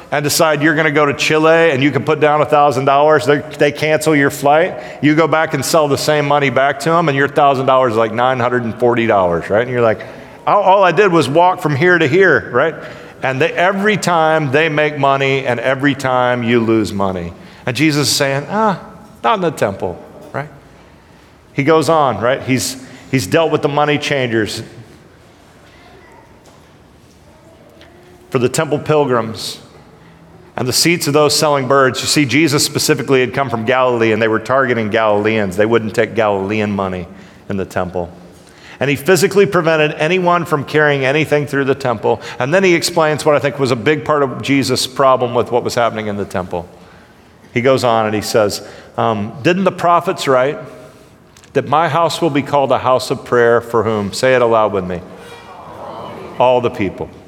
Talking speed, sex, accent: 195 wpm, male, American